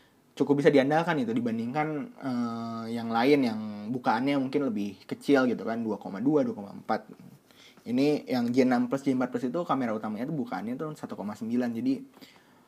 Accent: native